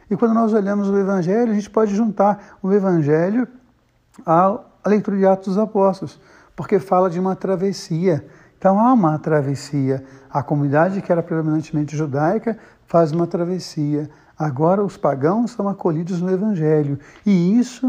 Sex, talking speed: male, 150 wpm